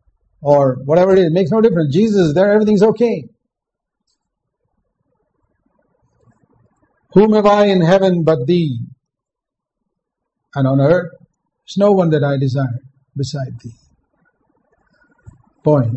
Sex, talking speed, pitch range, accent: male, 125 wpm, 130-170 Hz, Indian